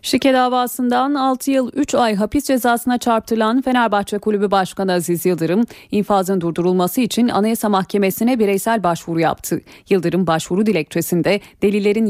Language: Turkish